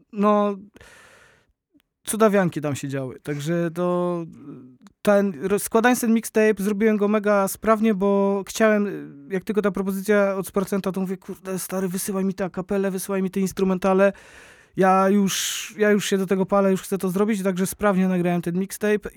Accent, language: native, Polish